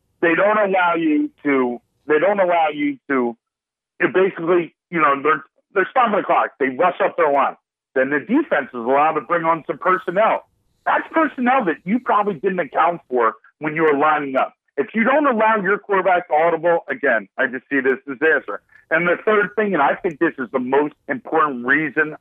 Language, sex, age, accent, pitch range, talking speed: English, male, 50-69, American, 155-250 Hz, 200 wpm